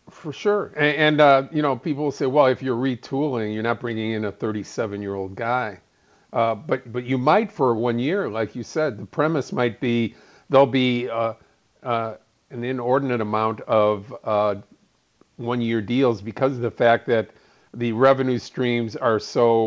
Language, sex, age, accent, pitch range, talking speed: English, male, 50-69, American, 110-135 Hz, 175 wpm